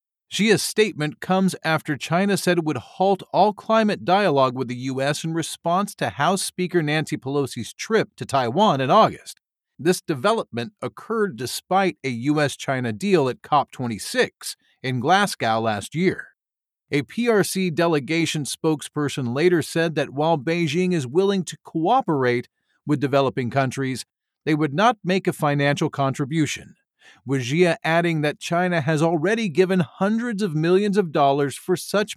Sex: male